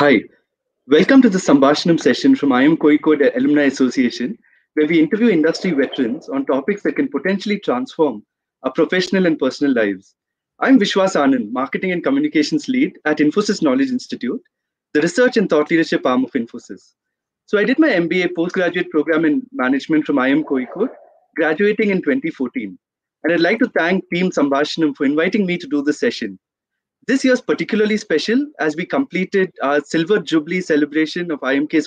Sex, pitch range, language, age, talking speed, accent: male, 155-230 Hz, English, 30-49, 165 wpm, Indian